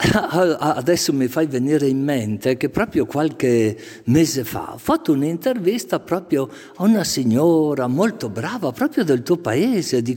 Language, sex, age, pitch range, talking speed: Italian, male, 50-69, 120-155 Hz, 150 wpm